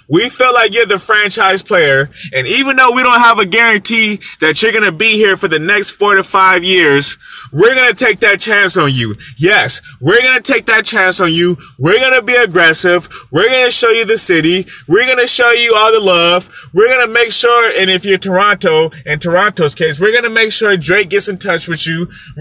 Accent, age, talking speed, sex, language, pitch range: American, 20-39, 235 wpm, male, English, 160-215 Hz